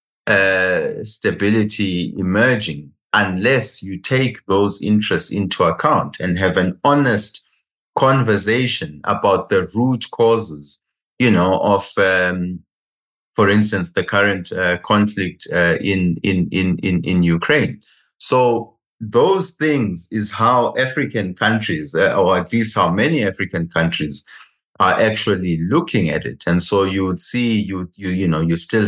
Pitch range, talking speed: 90-110 Hz, 140 wpm